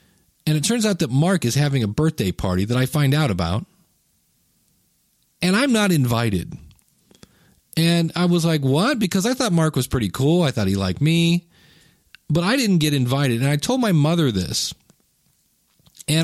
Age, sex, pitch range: 40-59, male, 125-165 Hz